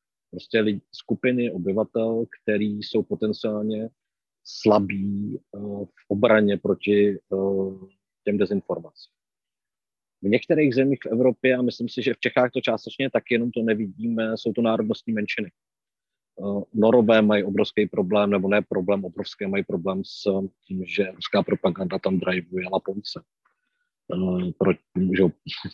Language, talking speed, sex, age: Czech, 140 wpm, male, 40-59